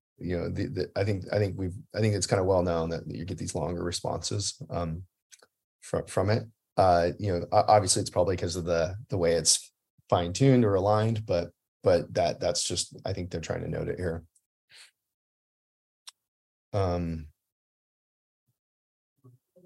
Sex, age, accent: male, 20-39, American